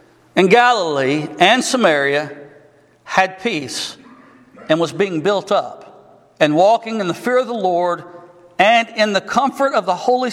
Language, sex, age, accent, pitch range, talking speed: English, male, 60-79, American, 170-245 Hz, 150 wpm